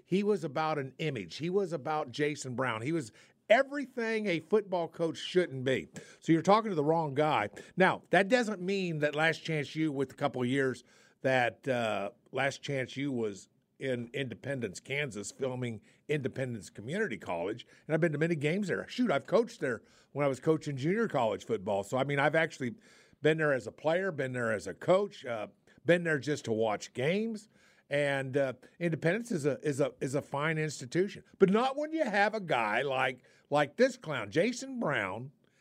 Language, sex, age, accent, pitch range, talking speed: English, male, 50-69, American, 130-175 Hz, 195 wpm